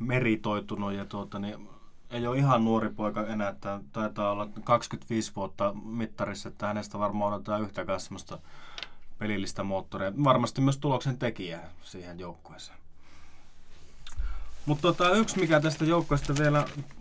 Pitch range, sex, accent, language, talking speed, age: 100-125 Hz, male, native, Finnish, 130 wpm, 20-39